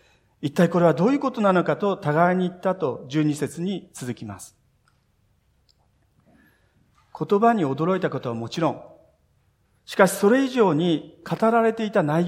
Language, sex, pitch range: Japanese, male, 140-215 Hz